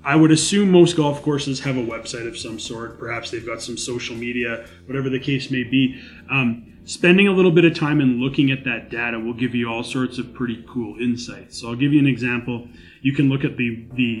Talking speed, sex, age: 235 wpm, male, 30-49